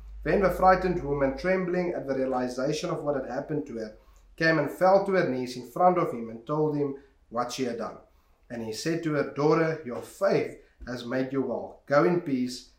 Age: 30-49